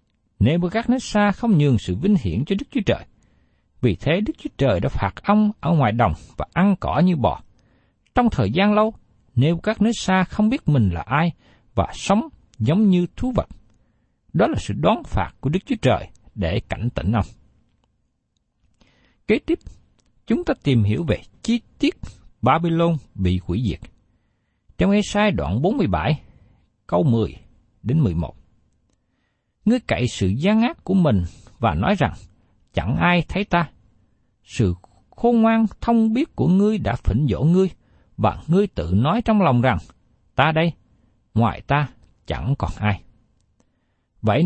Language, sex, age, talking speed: Vietnamese, male, 60-79, 165 wpm